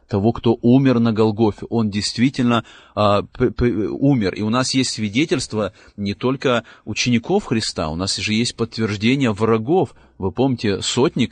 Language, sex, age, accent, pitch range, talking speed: Russian, male, 30-49, native, 100-120 Hz, 155 wpm